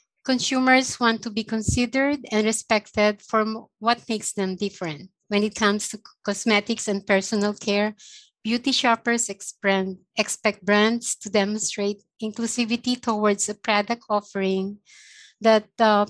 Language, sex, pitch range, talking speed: English, female, 190-235 Hz, 125 wpm